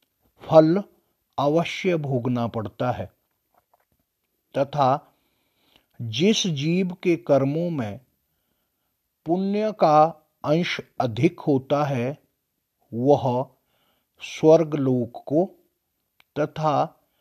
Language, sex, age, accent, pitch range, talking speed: Hindi, male, 50-69, native, 125-165 Hz, 75 wpm